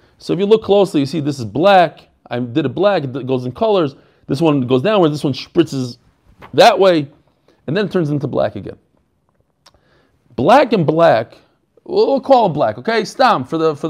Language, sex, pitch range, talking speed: English, male, 150-215 Hz, 200 wpm